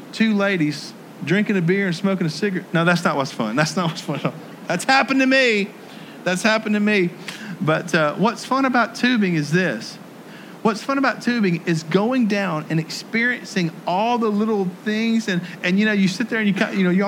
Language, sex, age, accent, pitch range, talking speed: English, male, 40-59, American, 165-215 Hz, 215 wpm